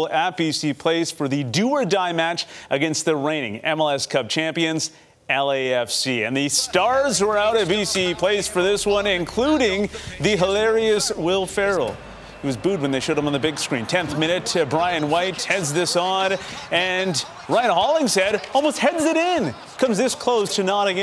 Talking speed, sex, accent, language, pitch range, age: 175 wpm, male, American, English, 140-180 Hz, 30-49